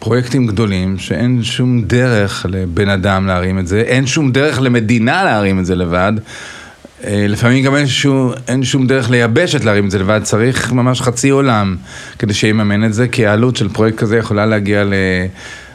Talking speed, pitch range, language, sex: 175 wpm, 105-130 Hz, Hebrew, male